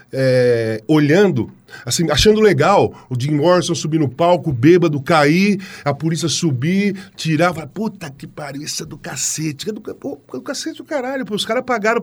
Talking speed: 185 wpm